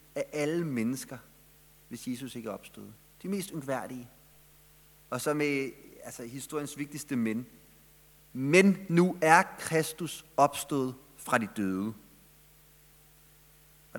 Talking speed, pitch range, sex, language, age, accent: 115 wpm, 130-185 Hz, male, Danish, 30-49, native